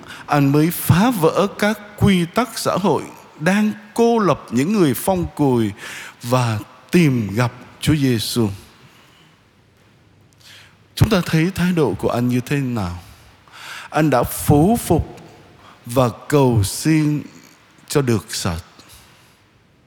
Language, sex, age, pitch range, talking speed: Vietnamese, male, 20-39, 120-175 Hz, 125 wpm